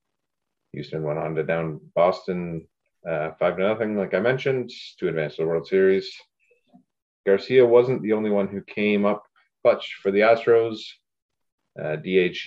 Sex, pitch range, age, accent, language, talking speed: male, 90-120 Hz, 30-49, American, English, 160 wpm